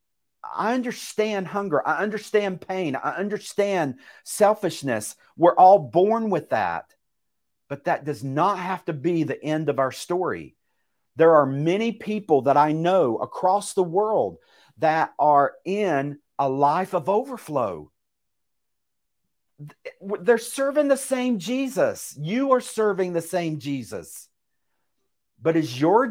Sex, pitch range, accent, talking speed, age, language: male, 145-205 Hz, American, 130 wpm, 50-69, English